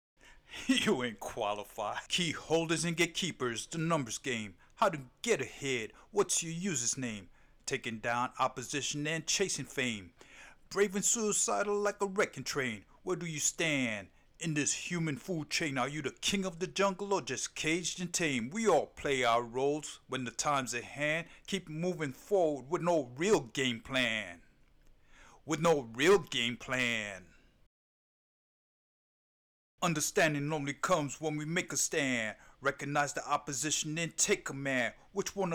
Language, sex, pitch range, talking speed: English, male, 125-170 Hz, 155 wpm